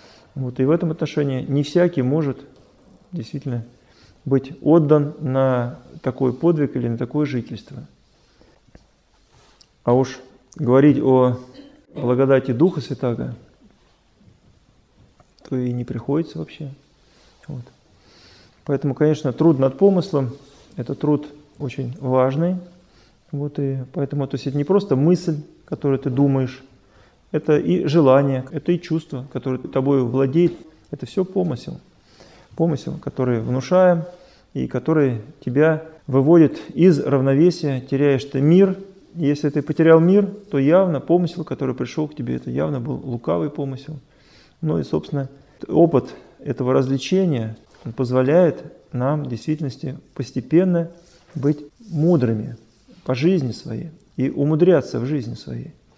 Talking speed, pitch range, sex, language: 120 wpm, 130-160 Hz, male, Russian